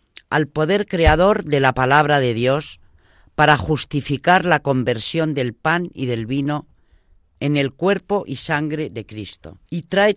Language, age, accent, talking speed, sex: Spanish, 40-59, Spanish, 155 wpm, female